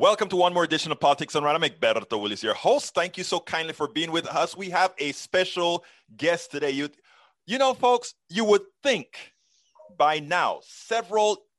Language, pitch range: English, 130-170 Hz